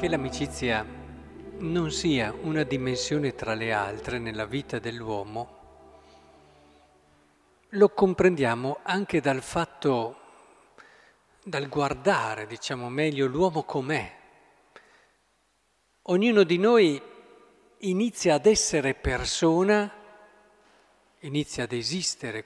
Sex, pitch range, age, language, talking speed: male, 125-180 Hz, 50-69, Italian, 90 wpm